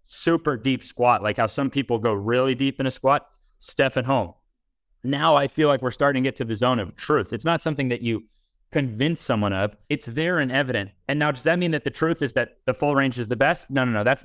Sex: male